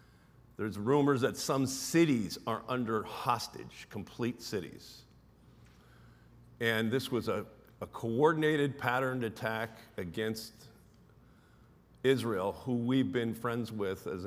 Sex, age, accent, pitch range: male, 50-69, American, 110-130 Hz